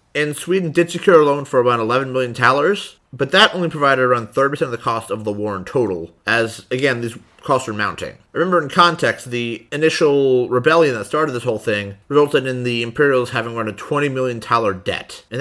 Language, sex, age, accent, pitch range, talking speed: English, male, 30-49, American, 115-160 Hz, 205 wpm